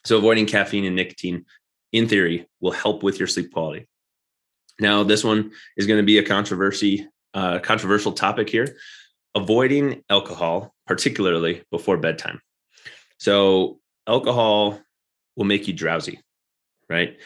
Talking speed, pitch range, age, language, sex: 130 wpm, 90-105 Hz, 30-49, English, male